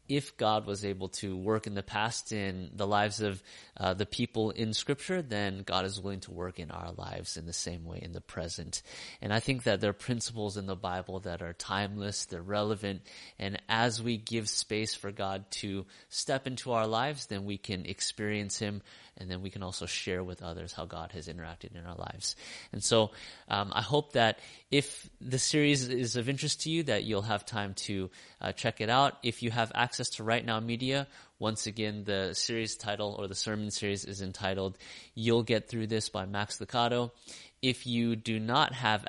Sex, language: male, English